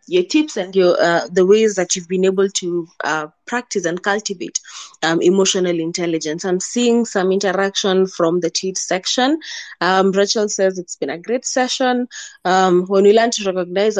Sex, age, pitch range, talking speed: female, 20-39, 175-210 Hz, 175 wpm